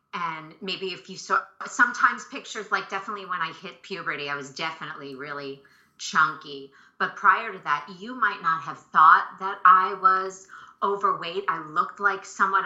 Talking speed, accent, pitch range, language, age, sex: 165 wpm, American, 155-195 Hz, English, 30-49, female